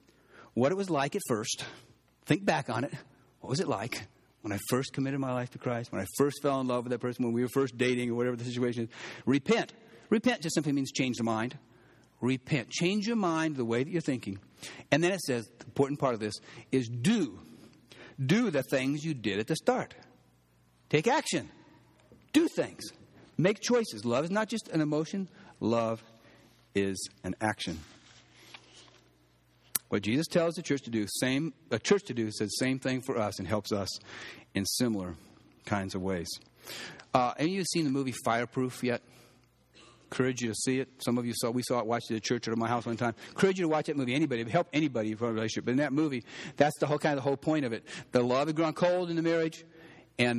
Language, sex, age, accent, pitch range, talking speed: English, male, 60-79, American, 115-155 Hz, 225 wpm